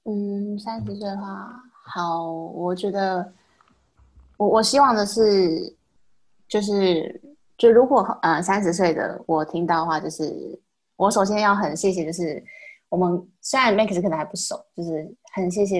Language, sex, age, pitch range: Chinese, female, 20-39, 165-210 Hz